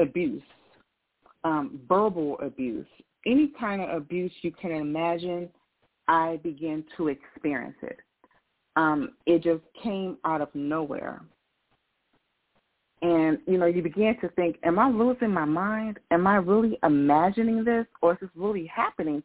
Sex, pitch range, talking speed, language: female, 165-205 Hz, 140 wpm, English